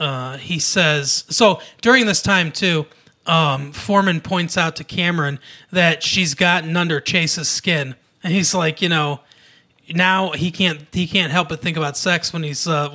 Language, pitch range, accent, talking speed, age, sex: English, 150-190 Hz, American, 175 wpm, 30-49, male